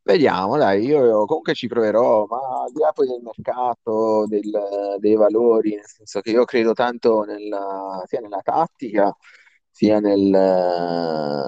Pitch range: 90-110 Hz